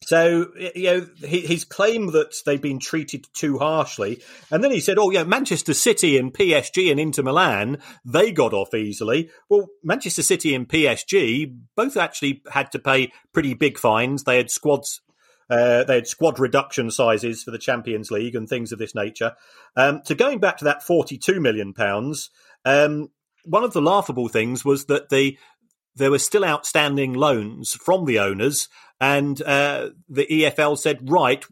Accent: British